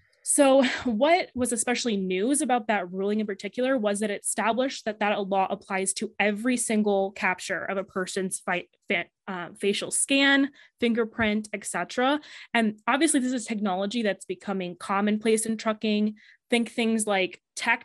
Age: 20-39